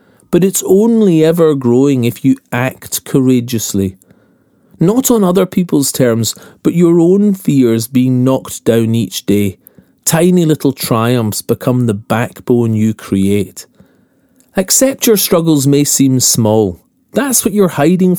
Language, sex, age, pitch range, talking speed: English, male, 40-59, 110-170 Hz, 135 wpm